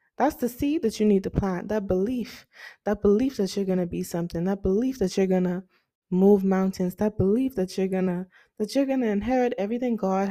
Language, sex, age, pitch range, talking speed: English, female, 20-39, 190-250 Hz, 205 wpm